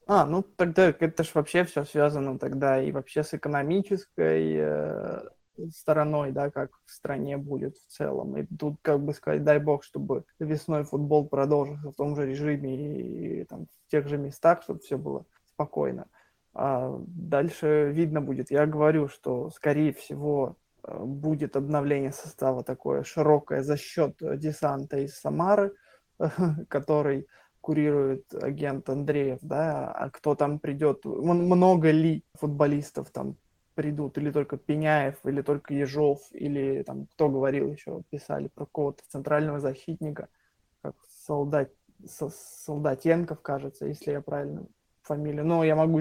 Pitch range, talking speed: 140-155 Hz, 145 wpm